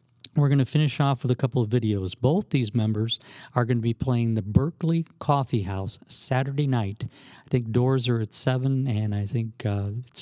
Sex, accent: male, American